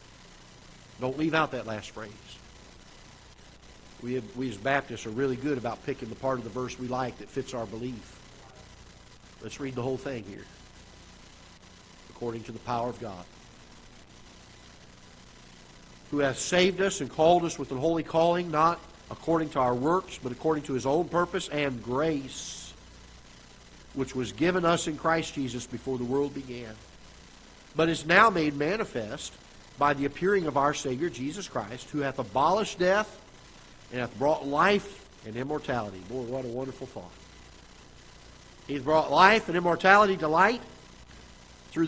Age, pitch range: 50-69, 120-180 Hz